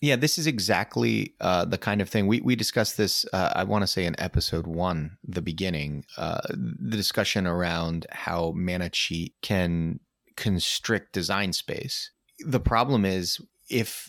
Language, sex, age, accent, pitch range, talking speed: English, male, 30-49, American, 90-110 Hz, 160 wpm